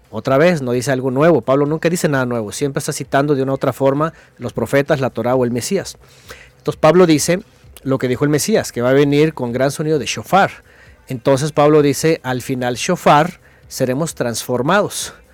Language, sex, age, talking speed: Spanish, male, 40-59, 200 wpm